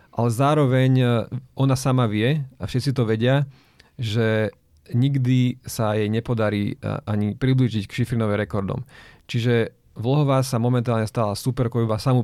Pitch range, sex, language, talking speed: 110-130 Hz, male, Slovak, 130 wpm